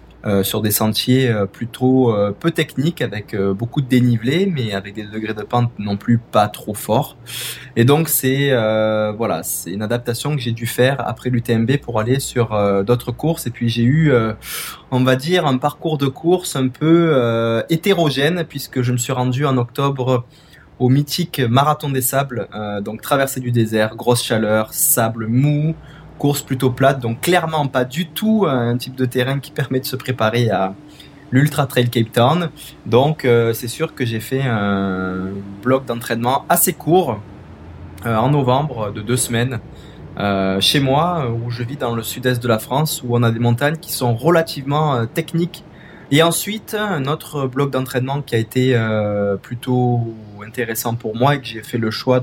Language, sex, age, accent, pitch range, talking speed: French, male, 20-39, French, 115-145 Hz, 190 wpm